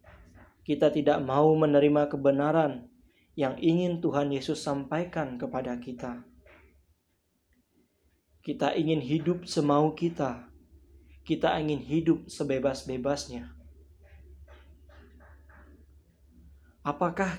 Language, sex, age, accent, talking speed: Indonesian, male, 20-39, native, 75 wpm